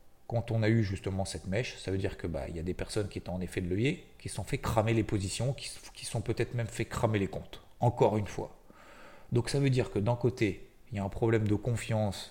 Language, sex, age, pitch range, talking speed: French, male, 30-49, 100-120 Hz, 270 wpm